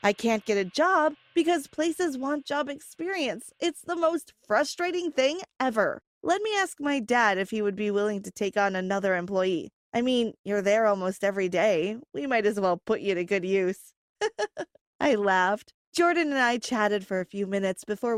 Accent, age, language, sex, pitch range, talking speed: American, 20-39, English, female, 200-280 Hz, 190 wpm